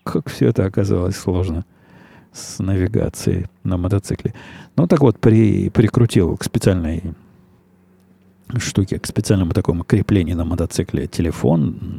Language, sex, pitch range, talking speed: Russian, male, 90-120 Hz, 115 wpm